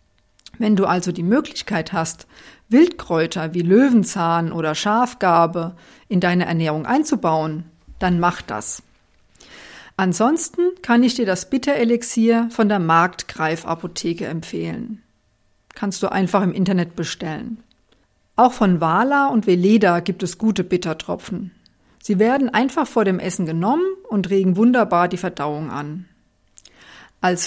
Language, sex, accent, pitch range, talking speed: German, female, German, 175-235 Hz, 125 wpm